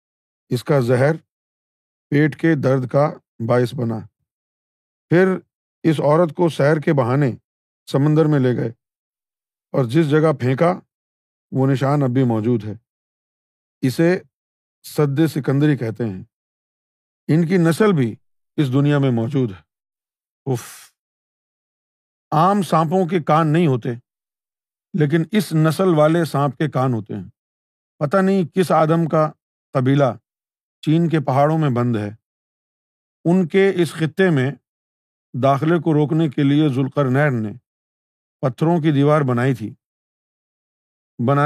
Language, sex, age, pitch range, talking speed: Urdu, male, 50-69, 125-160 Hz, 130 wpm